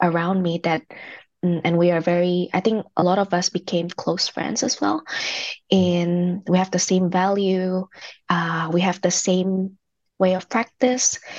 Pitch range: 175-195 Hz